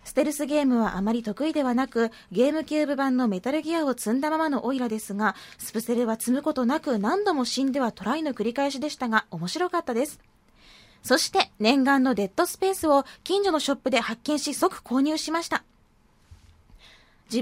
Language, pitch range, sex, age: Japanese, 230-295 Hz, female, 20-39